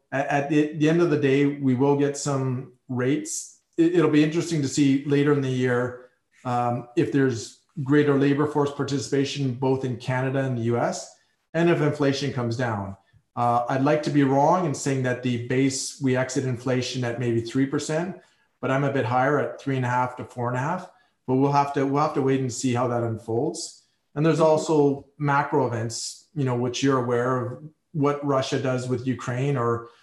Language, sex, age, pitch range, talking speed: English, male, 40-59, 120-140 Hz, 200 wpm